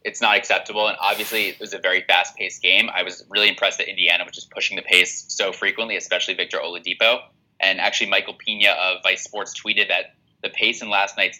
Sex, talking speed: male, 215 wpm